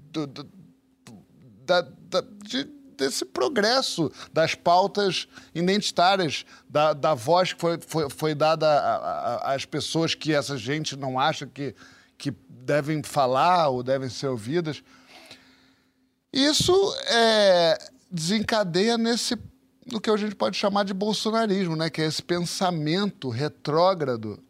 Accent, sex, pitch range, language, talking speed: Brazilian, male, 155-210 Hz, Portuguese, 105 wpm